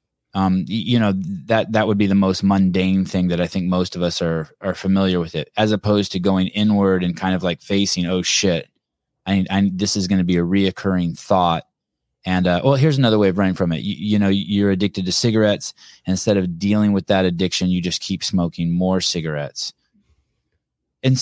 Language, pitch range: English, 95-110 Hz